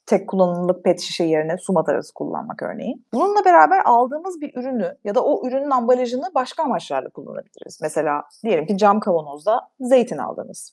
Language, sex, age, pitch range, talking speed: Turkish, female, 30-49, 200-295 Hz, 160 wpm